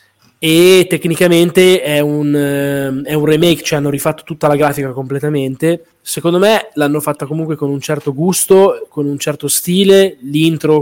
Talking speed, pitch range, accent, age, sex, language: 150 wpm, 125-155 Hz, native, 20-39, male, Italian